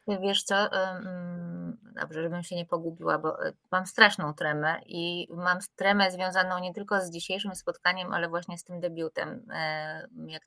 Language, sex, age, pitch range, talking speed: Polish, female, 20-39, 165-200 Hz, 150 wpm